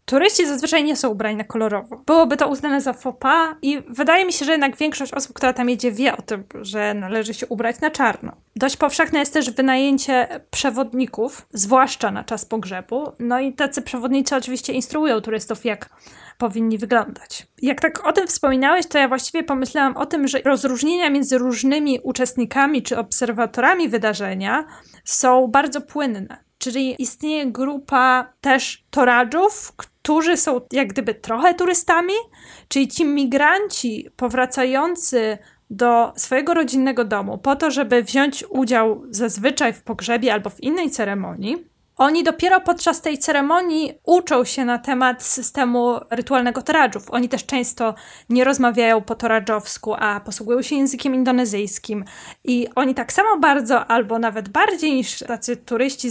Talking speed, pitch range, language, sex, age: 150 wpm, 235-290 Hz, Polish, female, 20-39